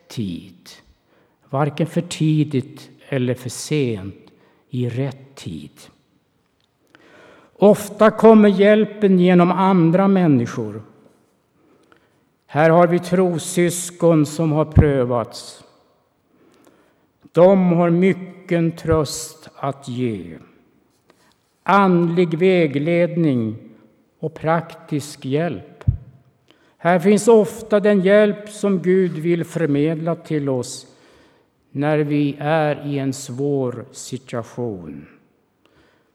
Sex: male